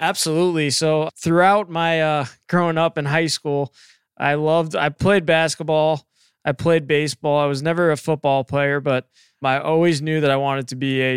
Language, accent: English, American